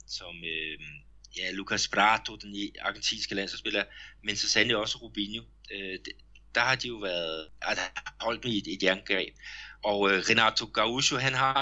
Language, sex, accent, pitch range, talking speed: Danish, male, native, 95-120 Hz, 145 wpm